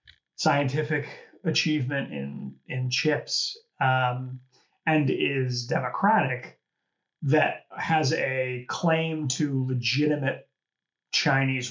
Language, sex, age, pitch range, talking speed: English, male, 30-49, 125-150 Hz, 80 wpm